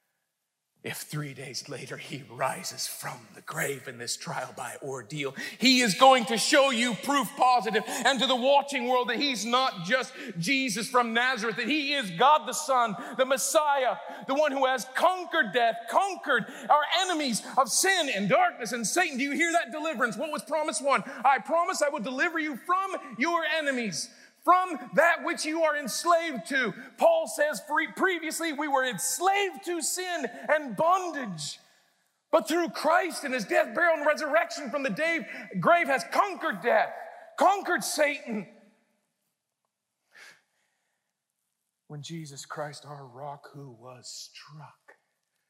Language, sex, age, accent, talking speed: English, male, 40-59, American, 155 wpm